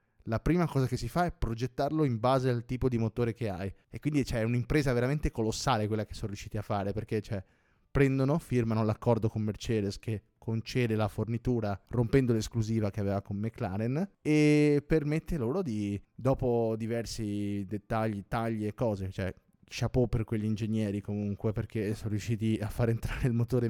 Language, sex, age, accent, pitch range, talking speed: Italian, male, 20-39, native, 105-120 Hz, 170 wpm